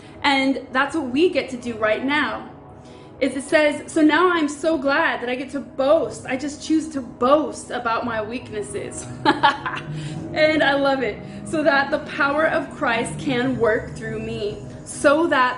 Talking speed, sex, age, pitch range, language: 175 wpm, female, 20-39, 245-295 Hz, English